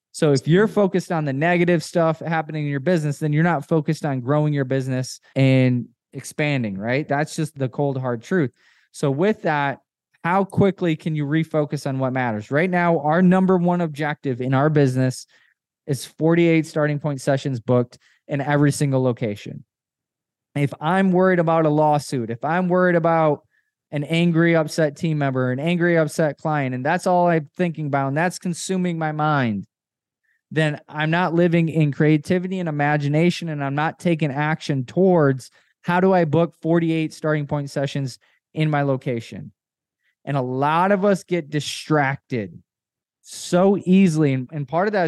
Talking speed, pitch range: 170 wpm, 135-170 Hz